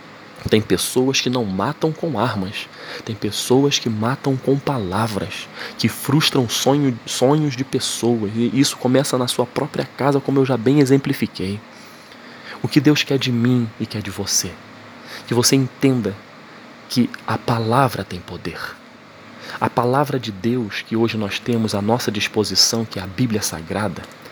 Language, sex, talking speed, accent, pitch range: Portuguese, male, 160 wpm, Brazilian, 110-130 Hz